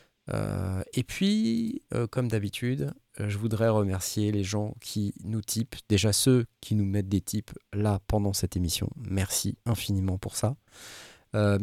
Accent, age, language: French, 20-39, French